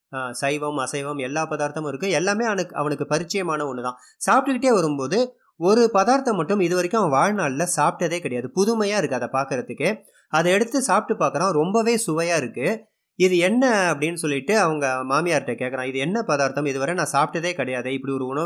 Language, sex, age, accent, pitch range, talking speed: Tamil, male, 30-49, native, 135-195 Hz, 160 wpm